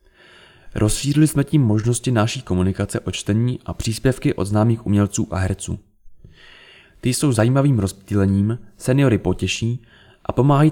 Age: 20-39